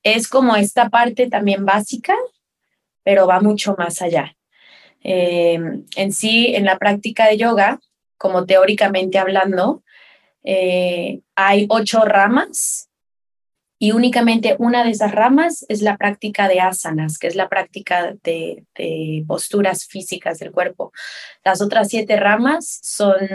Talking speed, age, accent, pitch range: 135 wpm, 20-39, Mexican, 180-220 Hz